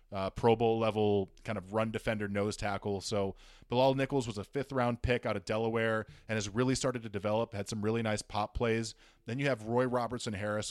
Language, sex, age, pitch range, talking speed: English, male, 20-39, 105-125 Hz, 220 wpm